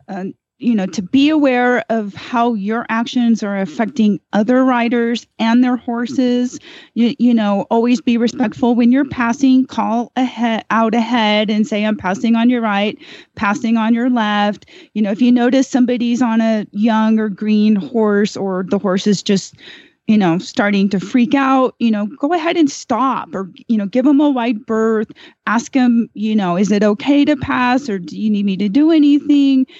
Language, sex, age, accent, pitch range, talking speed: English, female, 30-49, American, 205-250 Hz, 190 wpm